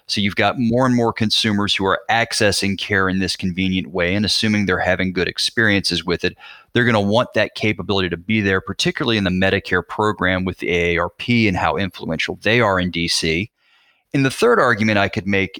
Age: 30-49